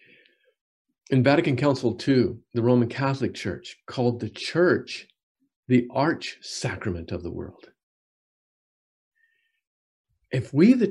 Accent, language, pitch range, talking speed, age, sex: American, English, 120-180 Hz, 110 wpm, 50-69, male